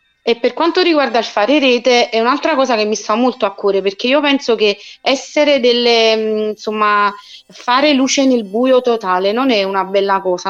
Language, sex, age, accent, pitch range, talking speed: Italian, female, 30-49, native, 200-250 Hz, 190 wpm